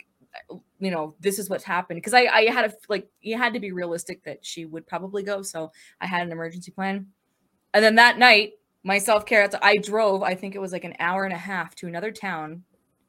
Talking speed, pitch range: 225 wpm, 175-220 Hz